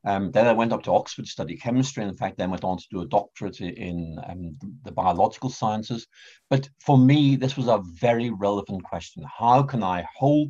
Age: 60-79